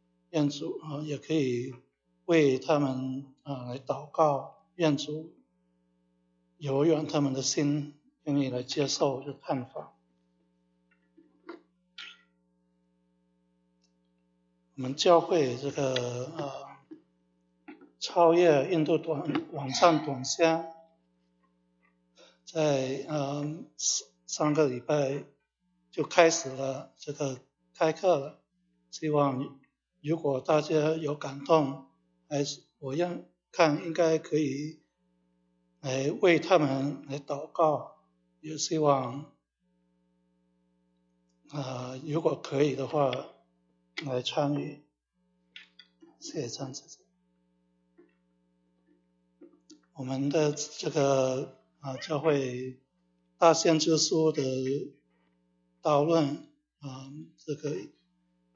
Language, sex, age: English, male, 60-79